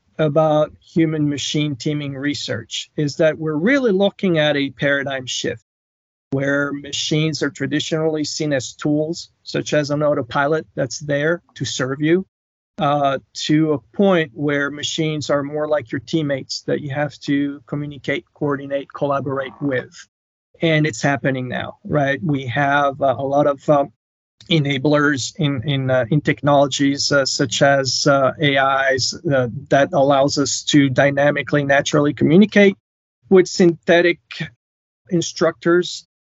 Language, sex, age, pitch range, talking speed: English, male, 40-59, 140-160 Hz, 135 wpm